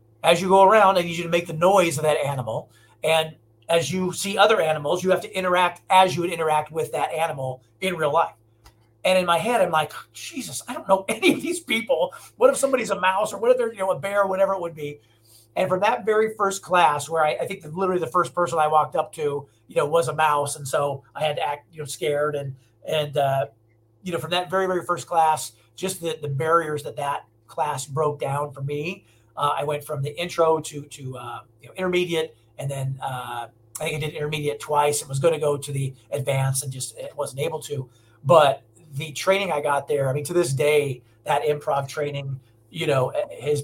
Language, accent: English, American